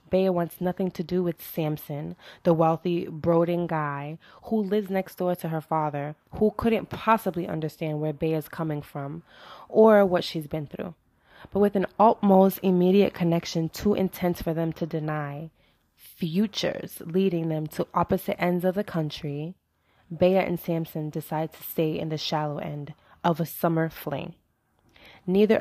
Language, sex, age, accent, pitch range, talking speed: English, female, 20-39, American, 155-185 Hz, 155 wpm